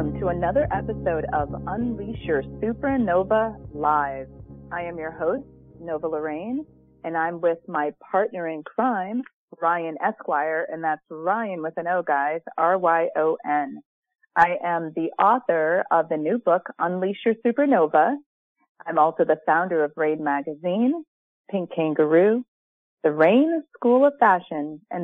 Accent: American